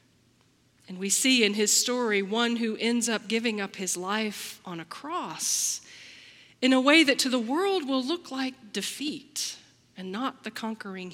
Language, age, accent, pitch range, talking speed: English, 40-59, American, 175-255 Hz, 170 wpm